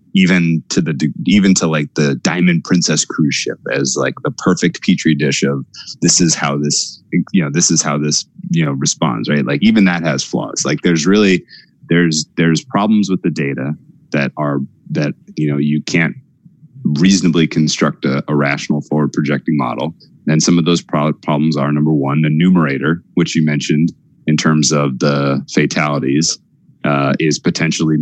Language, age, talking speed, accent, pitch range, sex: English, 30-49, 175 wpm, American, 70-80 Hz, male